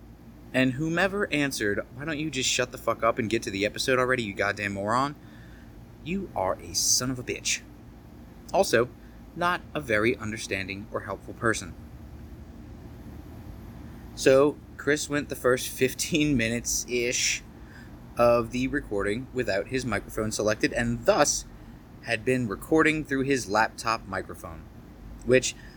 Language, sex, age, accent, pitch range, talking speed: English, male, 30-49, American, 110-135 Hz, 135 wpm